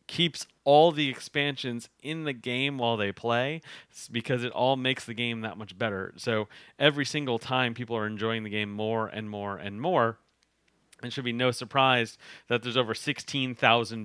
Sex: male